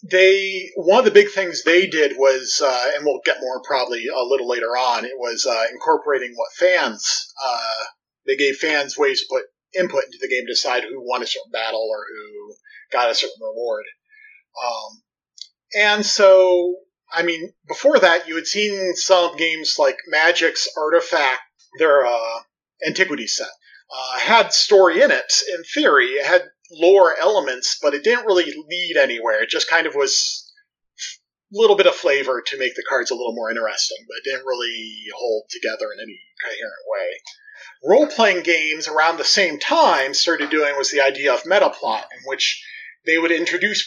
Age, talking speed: 30-49, 180 wpm